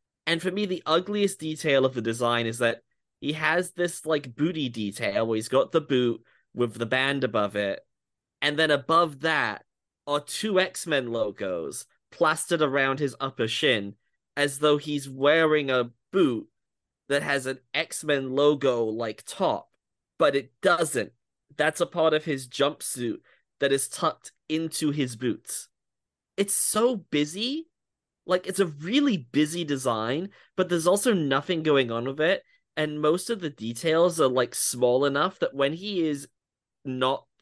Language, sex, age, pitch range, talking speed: English, male, 20-39, 130-175 Hz, 155 wpm